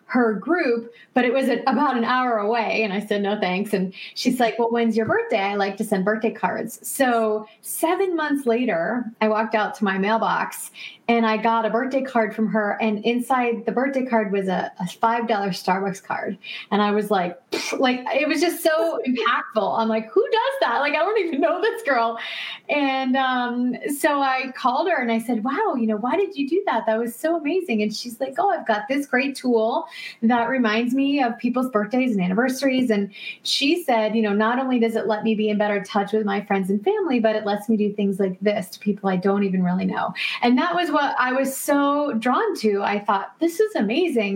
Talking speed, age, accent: 225 wpm, 30-49, American